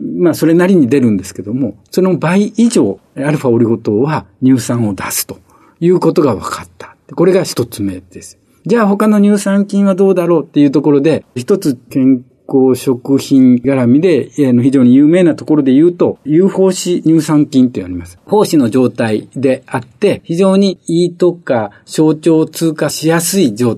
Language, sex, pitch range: Japanese, male, 120-170 Hz